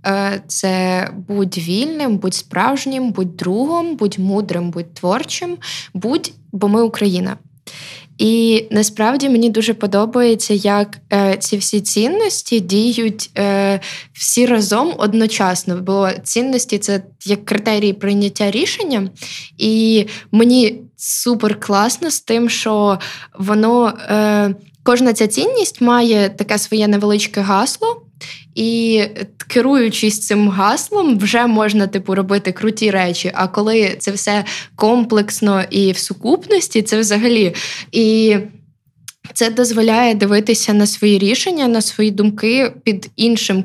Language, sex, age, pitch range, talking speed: Ukrainian, female, 20-39, 195-230 Hz, 120 wpm